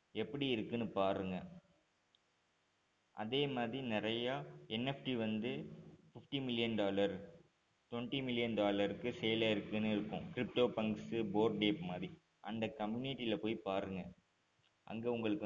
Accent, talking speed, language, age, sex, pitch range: native, 105 wpm, Tamil, 20-39, male, 105-135 Hz